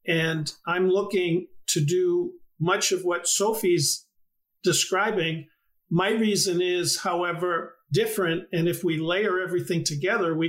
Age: 50-69